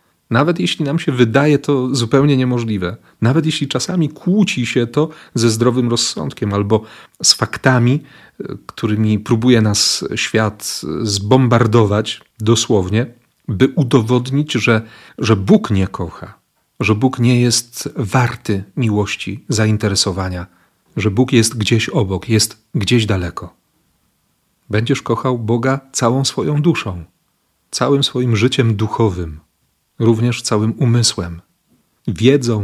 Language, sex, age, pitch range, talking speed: Polish, male, 40-59, 105-135 Hz, 115 wpm